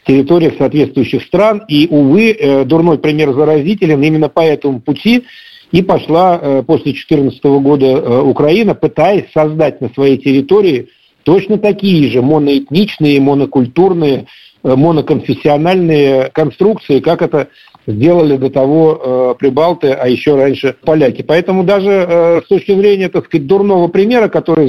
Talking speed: 135 wpm